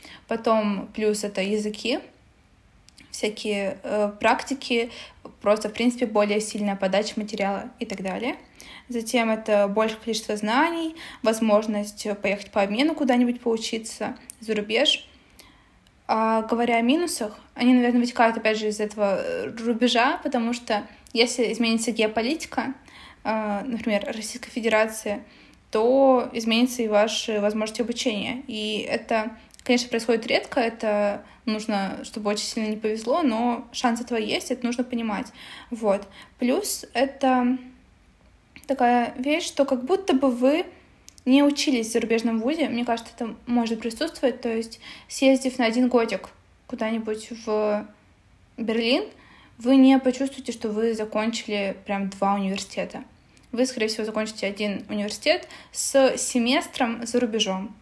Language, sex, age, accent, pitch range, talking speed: Russian, female, 20-39, native, 215-255 Hz, 130 wpm